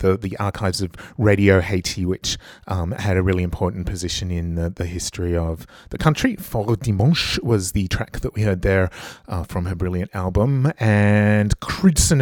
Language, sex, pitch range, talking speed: English, male, 95-115 Hz, 175 wpm